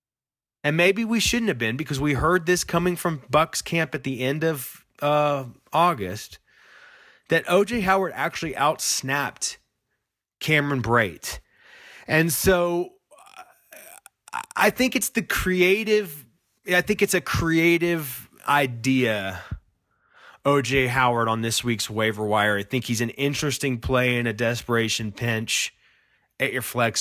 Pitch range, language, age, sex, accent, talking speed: 110-150 Hz, English, 30-49, male, American, 135 wpm